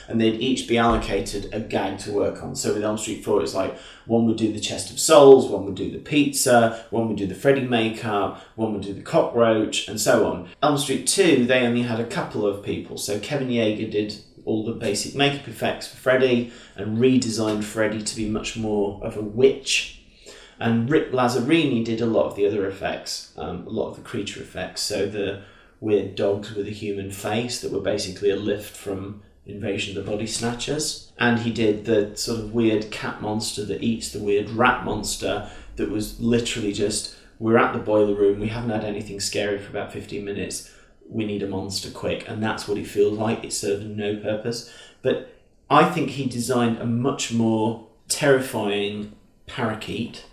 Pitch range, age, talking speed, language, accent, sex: 105-120 Hz, 30-49, 200 wpm, English, British, male